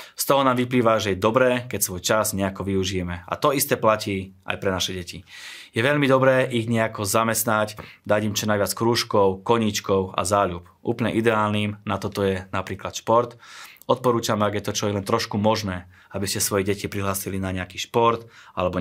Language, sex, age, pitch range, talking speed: Slovak, male, 20-39, 95-110 Hz, 190 wpm